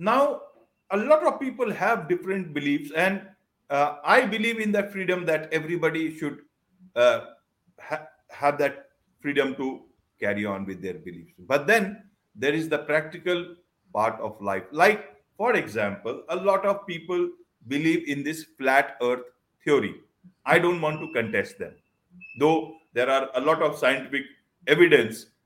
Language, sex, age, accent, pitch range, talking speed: English, male, 50-69, Indian, 130-195 Hz, 150 wpm